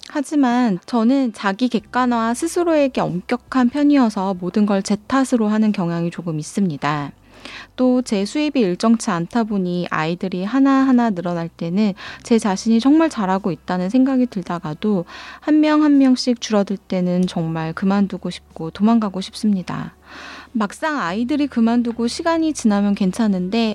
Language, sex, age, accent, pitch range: Korean, female, 20-39, native, 180-240 Hz